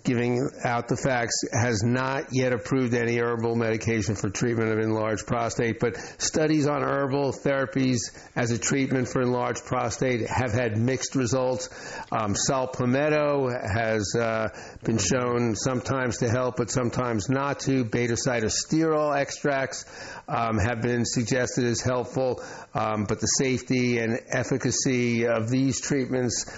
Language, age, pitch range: English, 60-79, 120-135 Hz